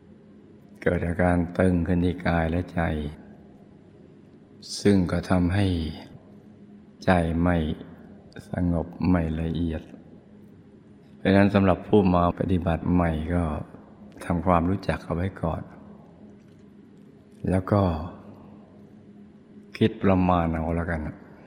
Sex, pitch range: male, 85-90 Hz